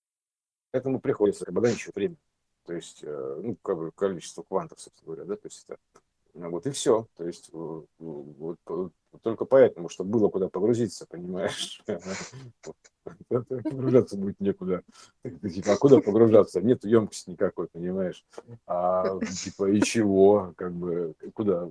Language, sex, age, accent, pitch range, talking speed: Russian, male, 50-69, native, 95-125 Hz, 135 wpm